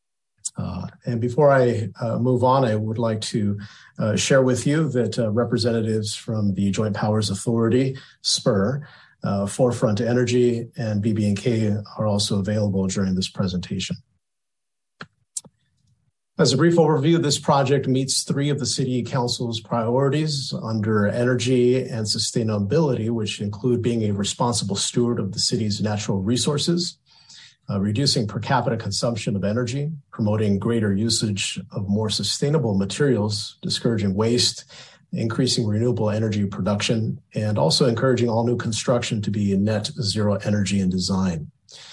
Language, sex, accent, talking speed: English, male, American, 140 wpm